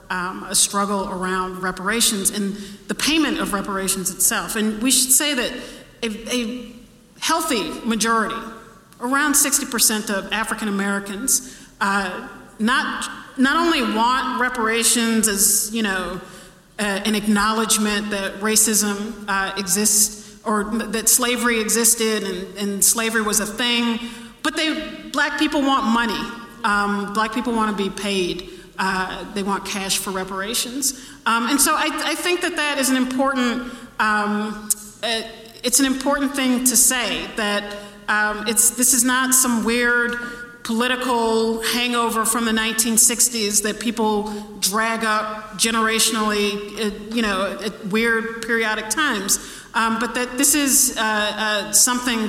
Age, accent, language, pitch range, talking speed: 40-59, American, English, 205-245 Hz, 140 wpm